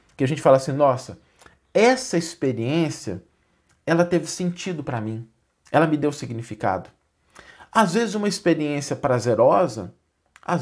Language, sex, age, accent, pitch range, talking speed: Portuguese, male, 50-69, Brazilian, 115-180 Hz, 130 wpm